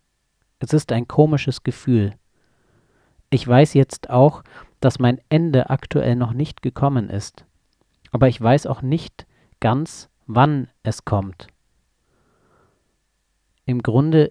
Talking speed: 115 wpm